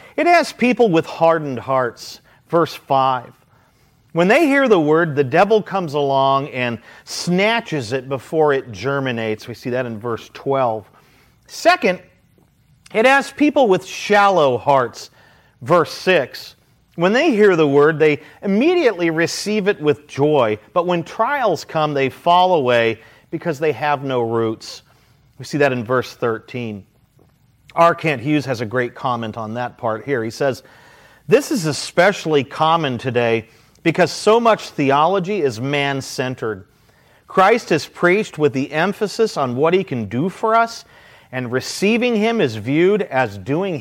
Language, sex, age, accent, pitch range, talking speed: English, male, 40-59, American, 125-185 Hz, 150 wpm